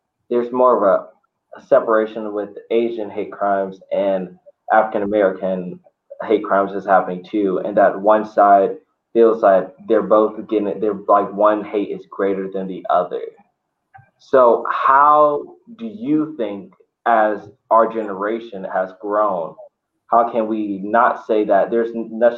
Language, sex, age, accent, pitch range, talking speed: English, male, 20-39, American, 95-115 Hz, 145 wpm